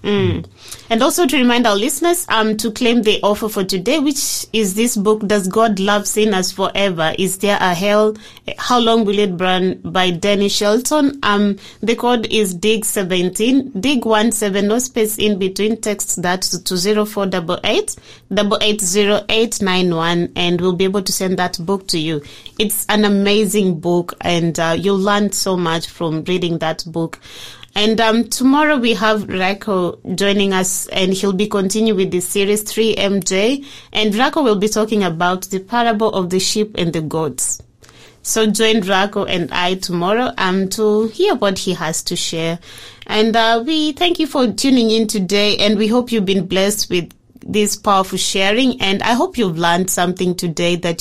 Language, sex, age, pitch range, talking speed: English, female, 20-39, 185-220 Hz, 180 wpm